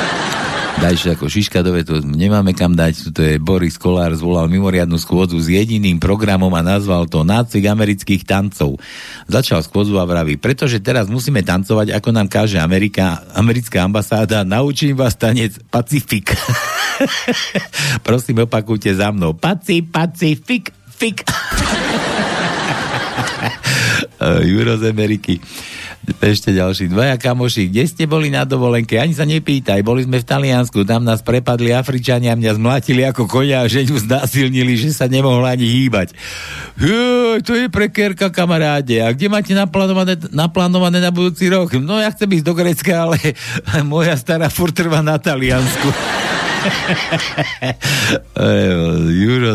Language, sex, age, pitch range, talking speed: Slovak, male, 50-69, 95-150 Hz, 130 wpm